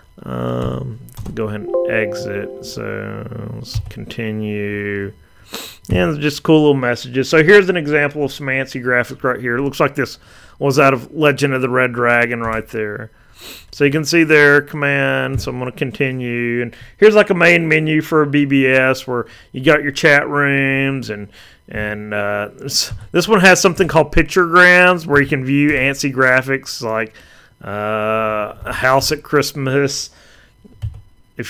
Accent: American